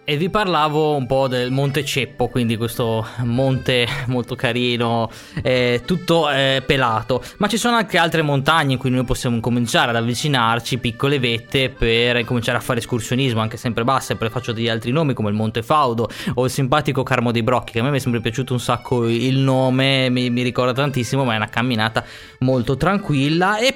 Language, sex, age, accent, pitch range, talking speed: Italian, male, 20-39, native, 115-140 Hz, 195 wpm